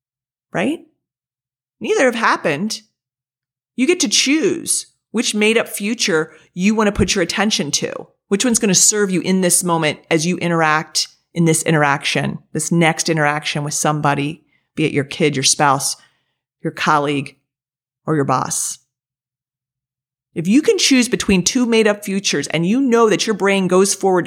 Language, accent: English, American